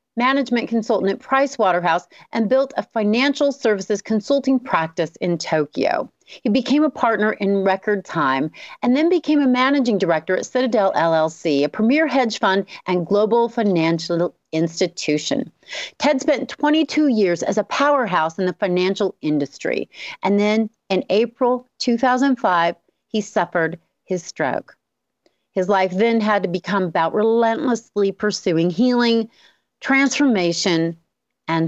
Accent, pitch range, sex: American, 175-245 Hz, female